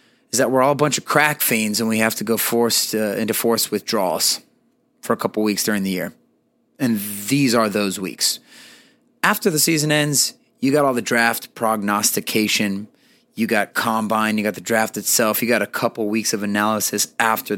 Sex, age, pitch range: male, 30-49, 110-150 Hz